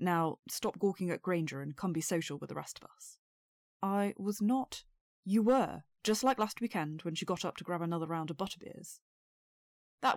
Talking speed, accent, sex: 200 wpm, British, female